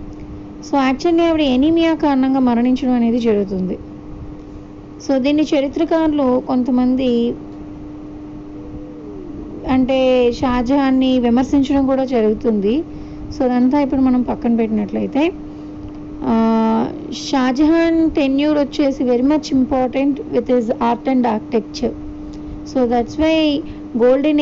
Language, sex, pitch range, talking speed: Telugu, female, 225-275 Hz, 95 wpm